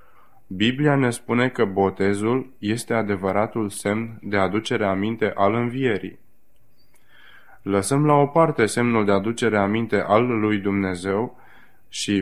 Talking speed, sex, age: 125 wpm, male, 20-39